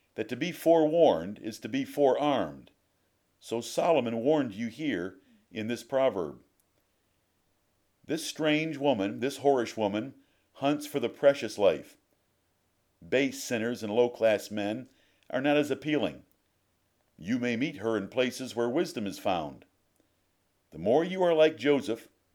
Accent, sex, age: American, male, 50-69